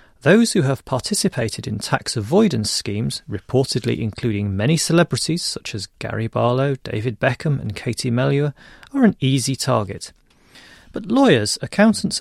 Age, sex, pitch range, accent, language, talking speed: 30-49, male, 110-165 Hz, British, English, 140 wpm